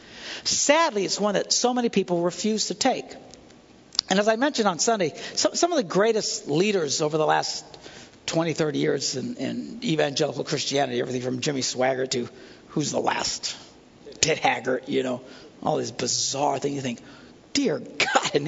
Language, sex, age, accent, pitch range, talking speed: English, male, 60-79, American, 160-235 Hz, 165 wpm